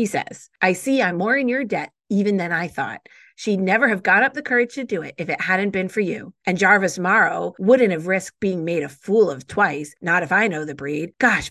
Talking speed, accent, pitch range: 250 wpm, American, 175-235 Hz